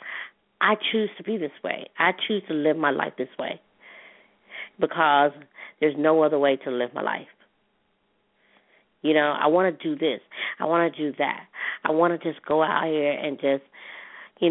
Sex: female